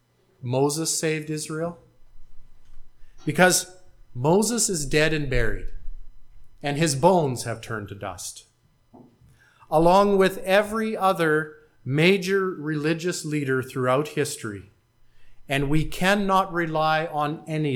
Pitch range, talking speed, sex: 120-165 Hz, 105 wpm, male